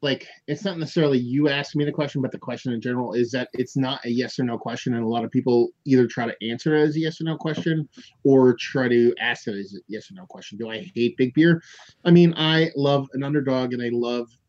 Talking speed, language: 265 wpm, English